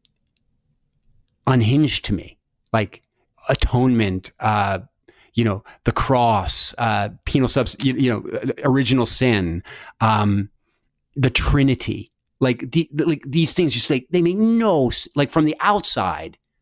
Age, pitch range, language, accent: 30-49, 110-145 Hz, English, American